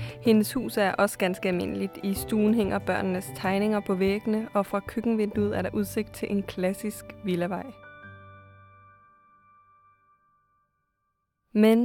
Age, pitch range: 20-39, 195-225 Hz